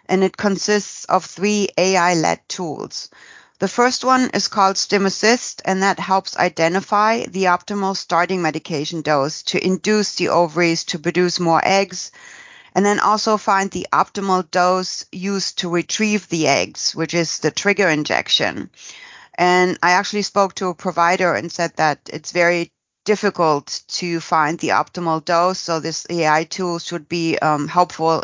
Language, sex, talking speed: English, female, 155 wpm